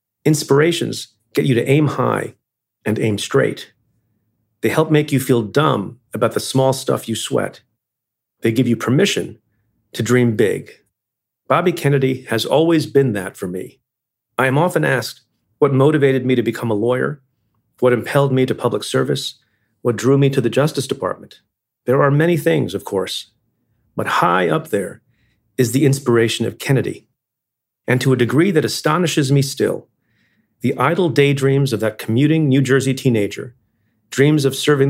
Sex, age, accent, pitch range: male, 40-59, American, 115-140 Hz